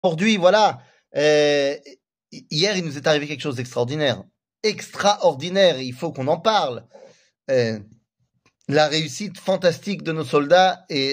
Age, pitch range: 30-49, 145-200 Hz